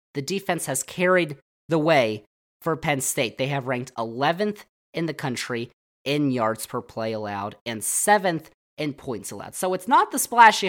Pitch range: 130-190 Hz